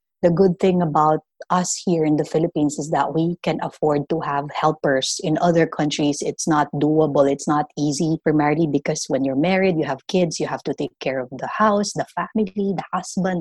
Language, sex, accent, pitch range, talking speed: English, female, Filipino, 150-180 Hz, 205 wpm